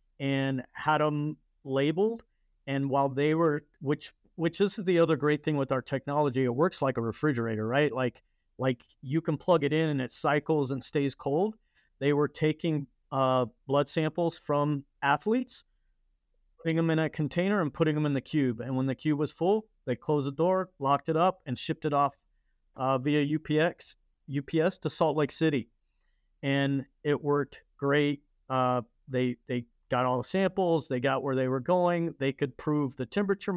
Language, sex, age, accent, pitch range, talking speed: English, male, 40-59, American, 135-160 Hz, 185 wpm